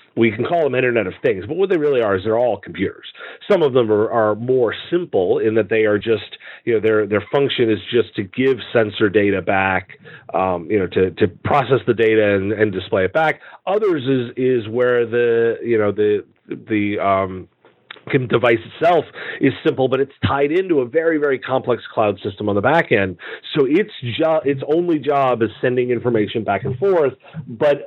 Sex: male